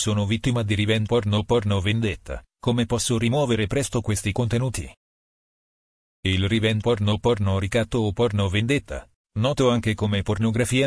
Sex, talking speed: male, 150 wpm